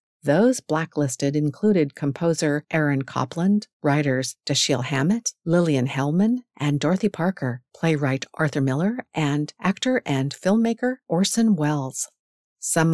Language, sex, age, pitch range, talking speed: English, female, 50-69, 140-185 Hz, 110 wpm